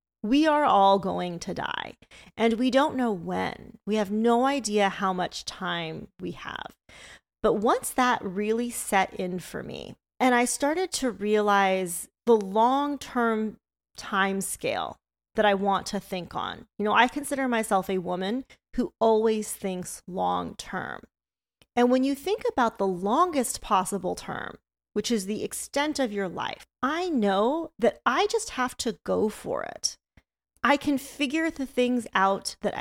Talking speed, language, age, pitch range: 160 wpm, English, 30-49, 195-245 Hz